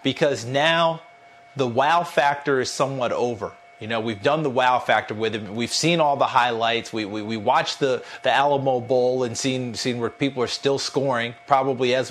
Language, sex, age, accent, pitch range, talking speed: English, male, 40-59, American, 120-145 Hz, 200 wpm